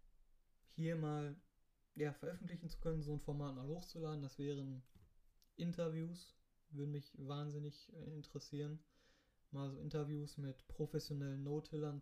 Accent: German